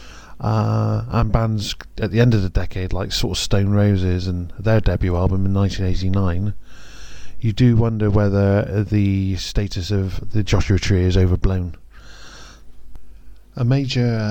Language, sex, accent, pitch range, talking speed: English, male, British, 90-110 Hz, 150 wpm